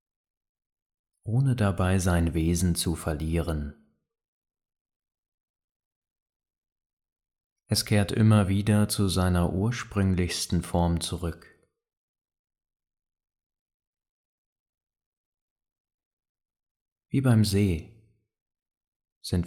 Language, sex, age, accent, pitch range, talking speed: German, male, 30-49, German, 85-105 Hz, 60 wpm